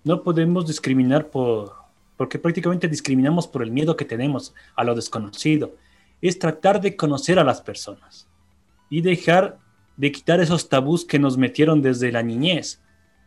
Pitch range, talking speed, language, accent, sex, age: 115-165 Hz, 155 wpm, Spanish, Mexican, male, 30-49